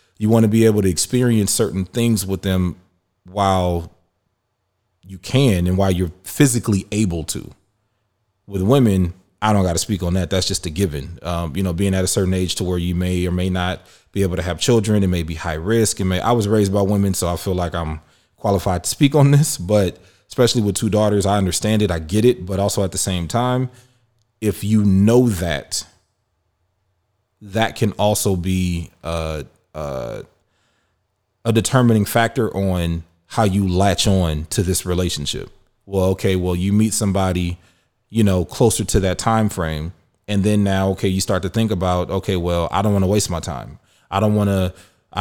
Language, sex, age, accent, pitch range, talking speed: English, male, 30-49, American, 90-110 Hz, 200 wpm